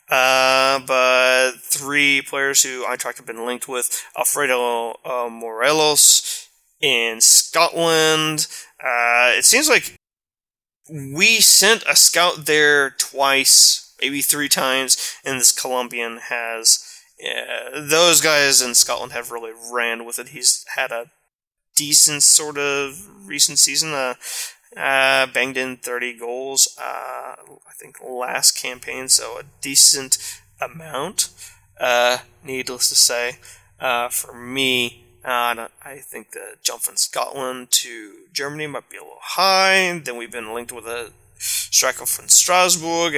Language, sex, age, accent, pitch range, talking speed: English, male, 20-39, American, 120-150 Hz, 135 wpm